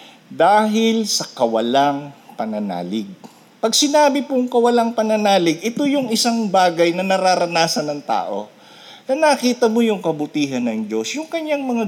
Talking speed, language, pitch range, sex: 135 wpm, Filipino, 140-235 Hz, male